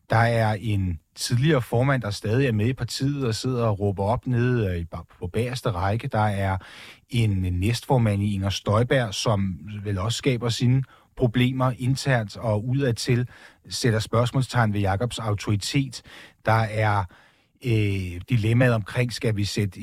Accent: native